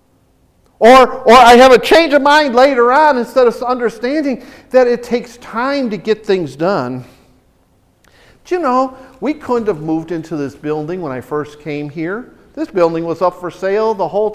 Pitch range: 220-310 Hz